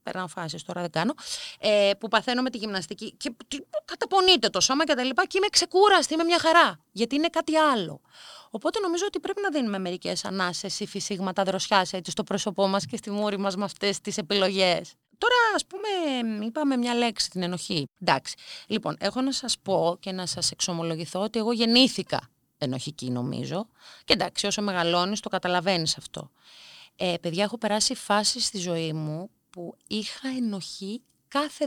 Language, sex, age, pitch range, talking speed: Greek, female, 30-49, 185-260 Hz, 175 wpm